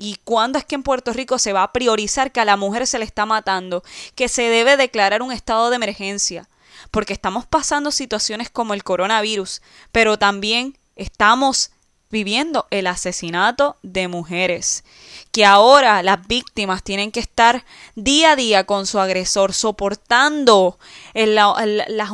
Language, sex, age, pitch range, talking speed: Spanish, female, 20-39, 200-255 Hz, 155 wpm